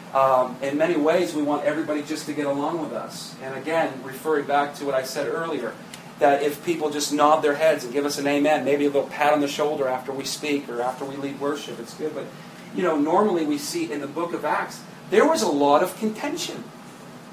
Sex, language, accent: male, English, American